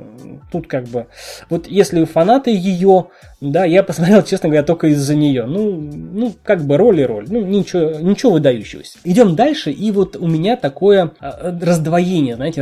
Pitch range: 140-185 Hz